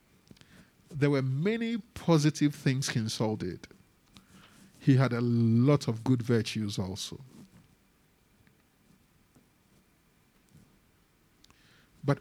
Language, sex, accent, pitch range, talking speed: English, male, Nigerian, 120-155 Hz, 80 wpm